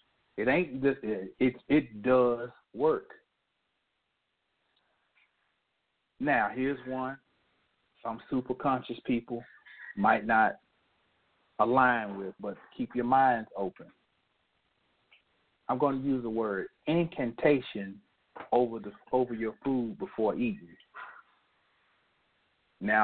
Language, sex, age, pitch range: English, male, 40-59, 110-130 Hz